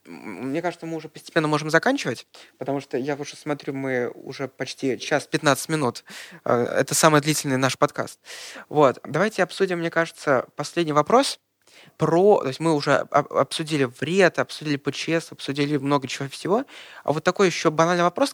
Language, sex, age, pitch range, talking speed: Russian, male, 20-39, 140-175 Hz, 160 wpm